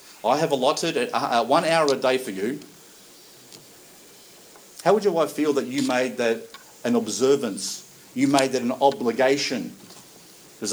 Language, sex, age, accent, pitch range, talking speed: English, male, 50-69, Australian, 115-150 Hz, 145 wpm